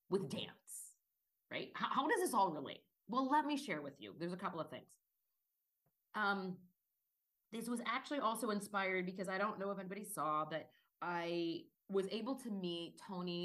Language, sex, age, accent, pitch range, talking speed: English, female, 30-49, American, 165-225 Hz, 180 wpm